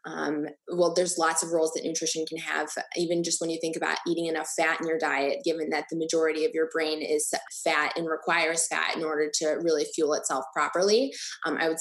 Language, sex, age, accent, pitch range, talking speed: English, female, 20-39, American, 160-190 Hz, 225 wpm